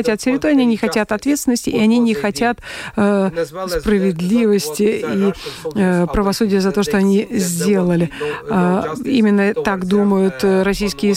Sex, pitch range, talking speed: female, 195-225 Hz, 125 wpm